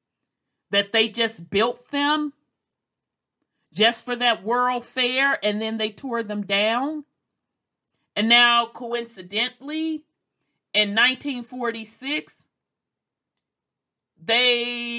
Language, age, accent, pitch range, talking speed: English, 40-59, American, 195-245 Hz, 90 wpm